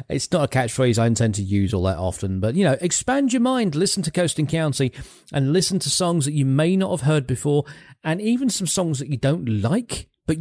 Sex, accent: male, British